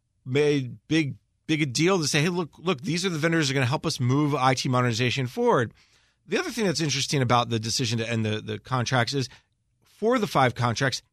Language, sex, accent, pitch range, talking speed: English, male, American, 130-165 Hz, 230 wpm